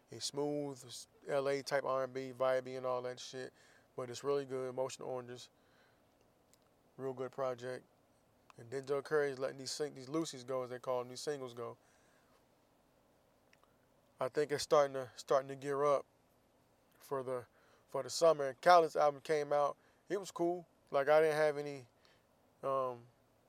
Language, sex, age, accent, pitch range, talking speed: English, male, 20-39, American, 130-150 Hz, 165 wpm